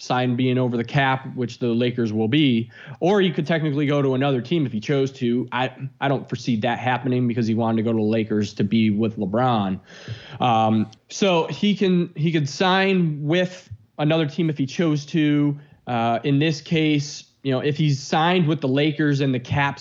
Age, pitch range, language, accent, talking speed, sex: 20-39, 120-145 Hz, English, American, 210 wpm, male